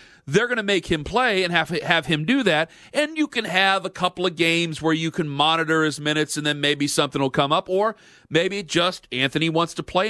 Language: English